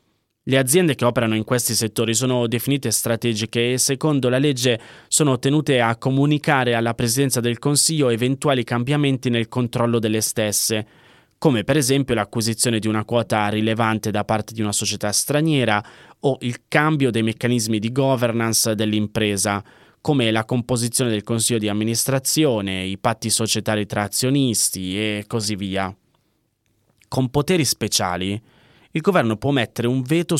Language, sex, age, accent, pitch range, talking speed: Italian, male, 20-39, native, 110-130 Hz, 145 wpm